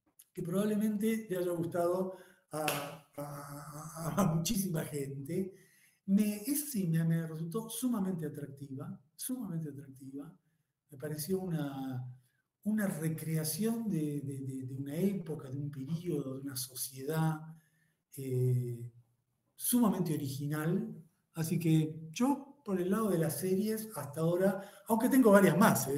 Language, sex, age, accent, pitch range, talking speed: Spanish, male, 40-59, Argentinian, 140-200 Hz, 125 wpm